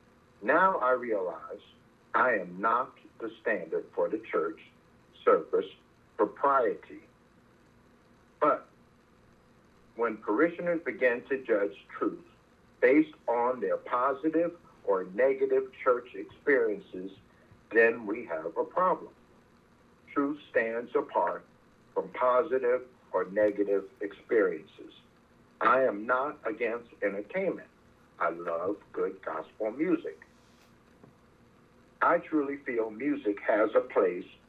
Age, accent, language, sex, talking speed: 60-79, American, English, male, 100 wpm